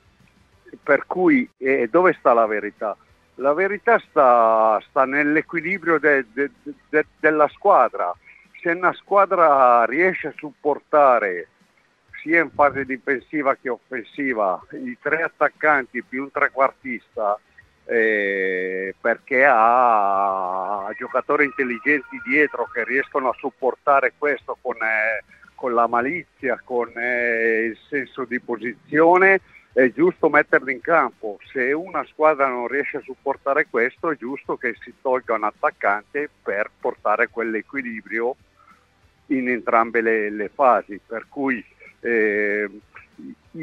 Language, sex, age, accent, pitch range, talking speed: Italian, male, 60-79, native, 115-155 Hz, 120 wpm